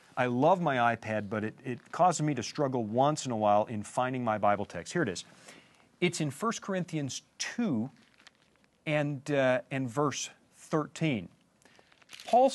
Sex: male